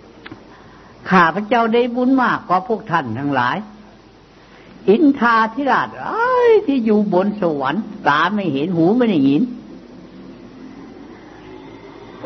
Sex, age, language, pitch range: female, 60-79, Thai, 135-215 Hz